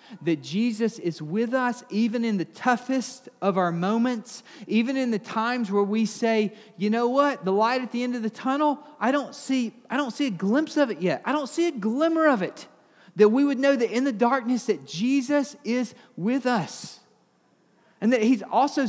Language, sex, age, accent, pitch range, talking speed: English, male, 30-49, American, 185-245 Hz, 205 wpm